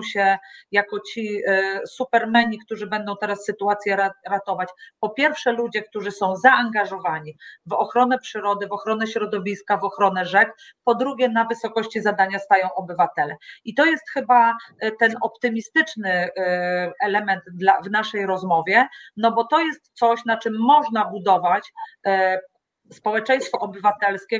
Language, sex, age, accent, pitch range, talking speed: Polish, female, 30-49, native, 195-240 Hz, 130 wpm